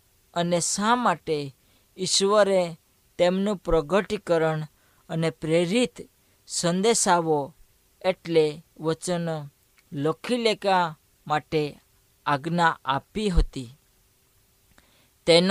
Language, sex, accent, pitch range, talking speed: Hindi, female, native, 140-185 Hz, 55 wpm